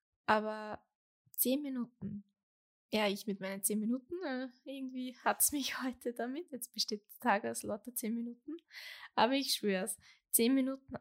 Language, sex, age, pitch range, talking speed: German, female, 10-29, 205-250 Hz, 160 wpm